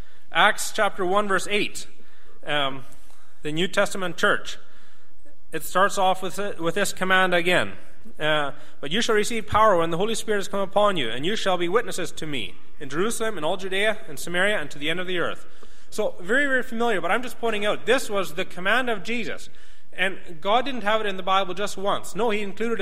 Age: 30-49